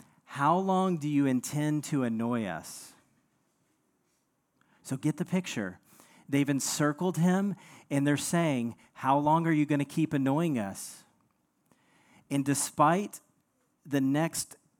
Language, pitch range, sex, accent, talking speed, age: English, 125-155 Hz, male, American, 125 wpm, 40-59